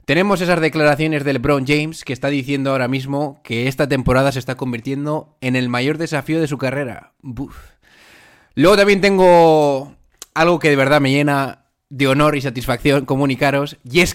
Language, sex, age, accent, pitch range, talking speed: Spanish, male, 20-39, Spanish, 130-175 Hz, 170 wpm